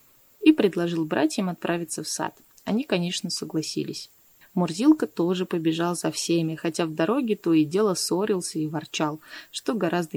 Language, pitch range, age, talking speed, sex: Russian, 160-205 Hz, 20-39, 150 wpm, female